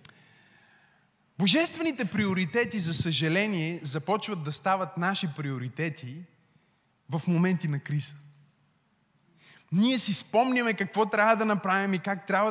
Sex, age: male, 20-39